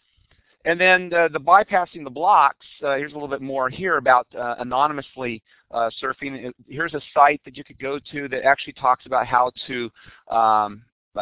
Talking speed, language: 185 wpm, English